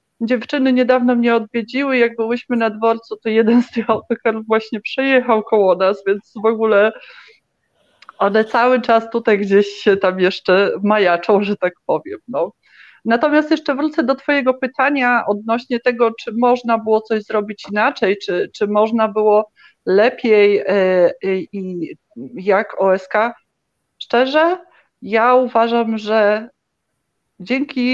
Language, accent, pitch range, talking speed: Polish, native, 210-250 Hz, 125 wpm